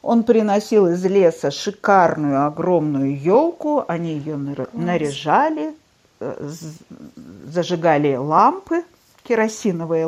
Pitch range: 170-260 Hz